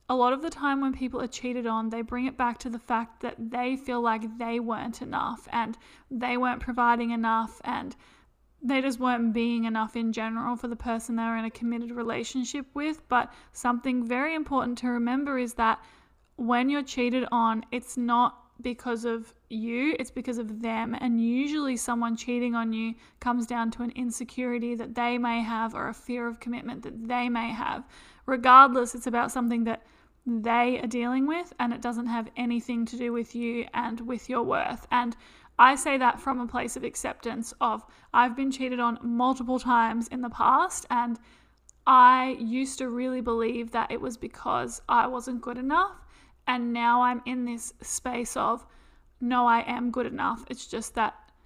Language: English